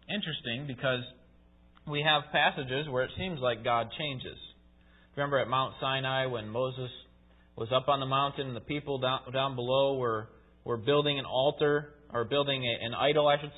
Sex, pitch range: male, 120-155 Hz